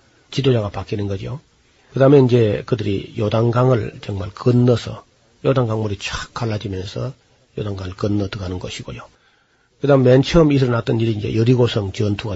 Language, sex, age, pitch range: Korean, male, 40-59, 110-130 Hz